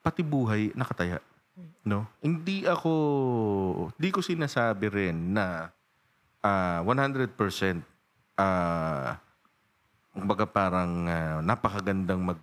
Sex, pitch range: male, 90-120 Hz